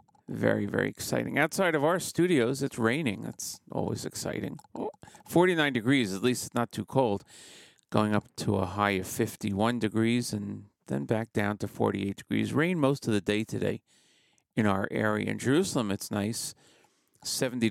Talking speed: 170 wpm